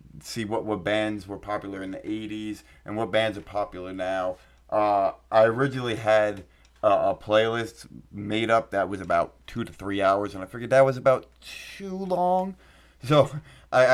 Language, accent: English, American